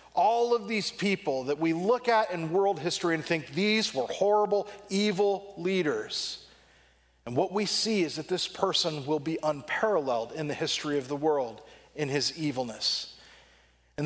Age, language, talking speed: 40-59, English, 165 wpm